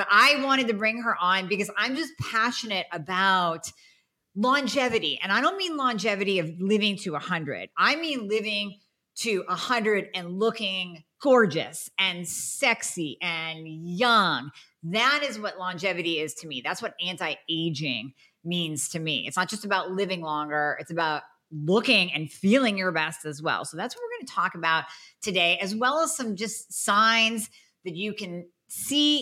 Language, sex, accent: English, female, American